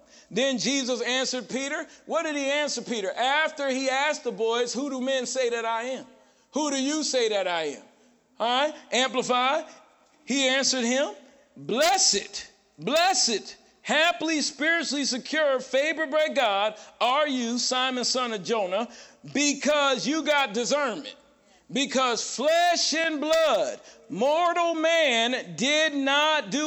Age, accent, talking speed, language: 50-69, American, 135 wpm, English